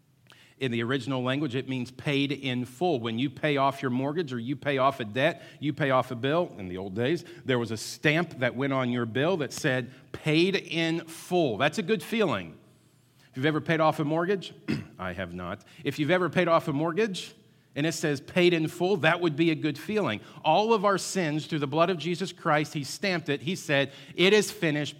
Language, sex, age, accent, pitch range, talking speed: English, male, 40-59, American, 120-160 Hz, 230 wpm